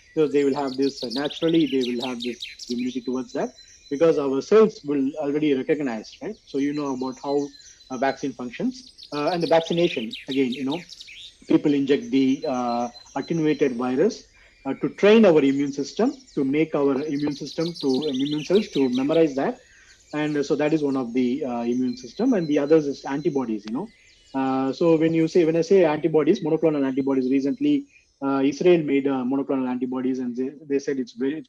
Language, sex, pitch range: Tamil, male, 135-175 Hz